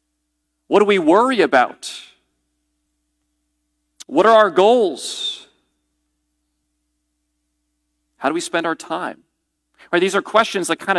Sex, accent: male, American